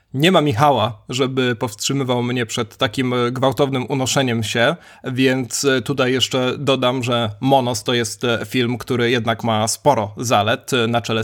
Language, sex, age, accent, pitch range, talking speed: Polish, male, 20-39, native, 115-135 Hz, 145 wpm